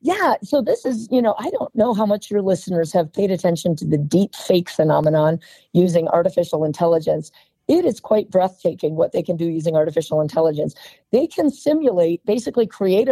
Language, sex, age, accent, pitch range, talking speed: English, female, 40-59, American, 180-230 Hz, 185 wpm